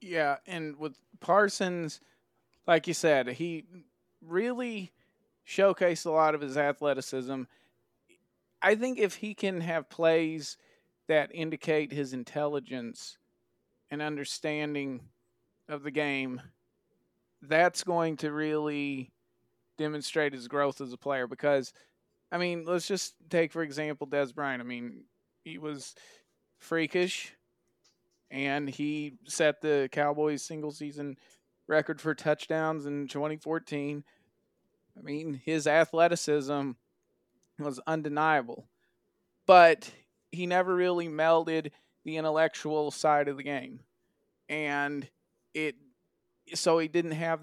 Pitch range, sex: 145-165 Hz, male